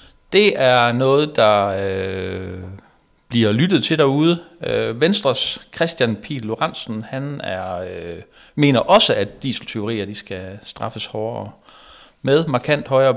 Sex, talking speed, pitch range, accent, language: male, 125 wpm, 105-140 Hz, native, Danish